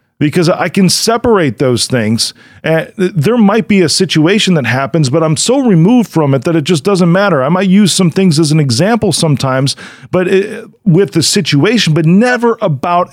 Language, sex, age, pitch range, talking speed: English, male, 40-59, 130-185 Hz, 190 wpm